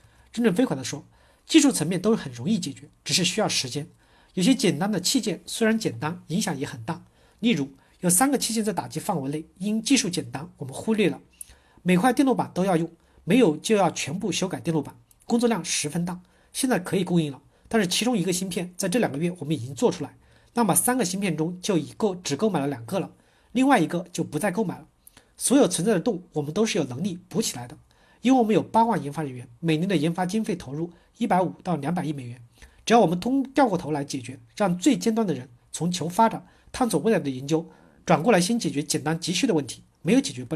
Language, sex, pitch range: Chinese, male, 150-215 Hz